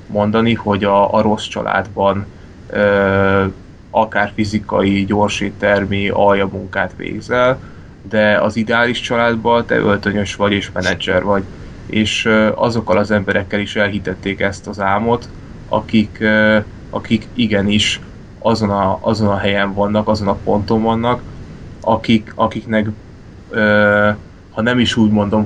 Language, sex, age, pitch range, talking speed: Hungarian, male, 20-39, 100-110 Hz, 130 wpm